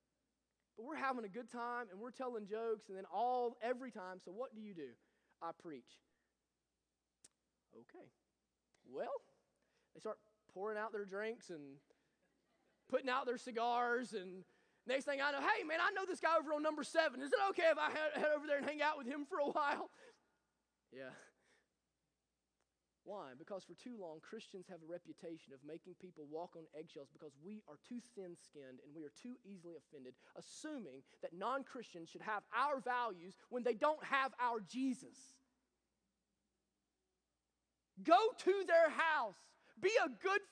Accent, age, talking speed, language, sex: American, 20-39, 170 wpm, English, male